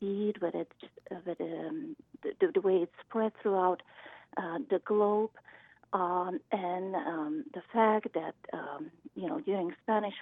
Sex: female